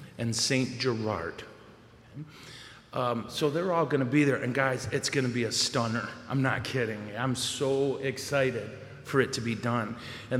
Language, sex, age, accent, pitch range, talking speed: English, male, 40-59, American, 125-160 Hz, 180 wpm